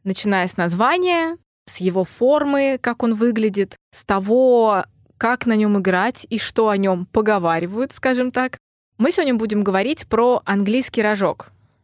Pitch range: 185-240 Hz